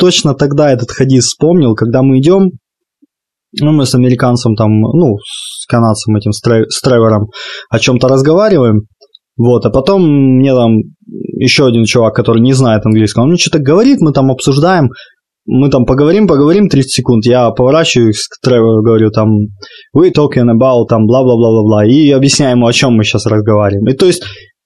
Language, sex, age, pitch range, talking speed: Russian, male, 20-39, 115-145 Hz, 165 wpm